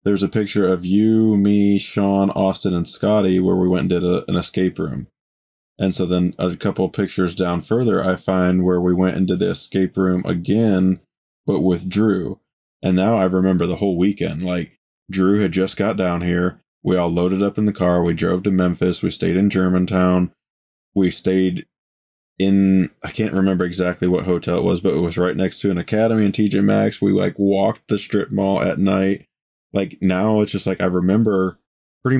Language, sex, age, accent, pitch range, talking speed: English, male, 20-39, American, 90-100 Hz, 200 wpm